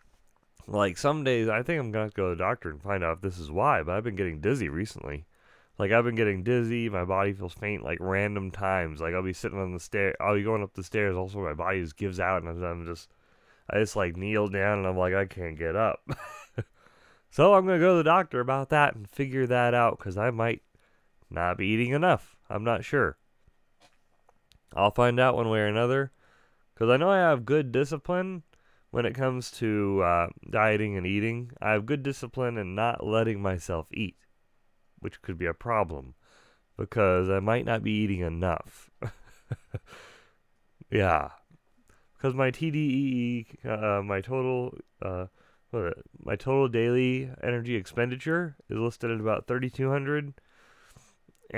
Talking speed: 185 wpm